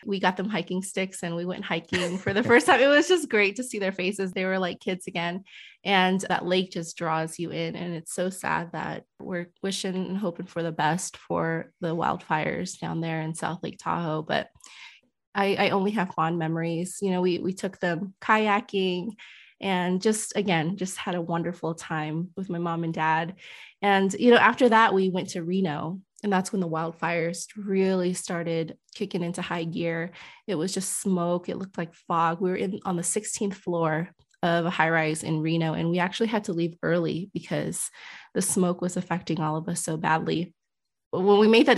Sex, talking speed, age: female, 205 wpm, 20-39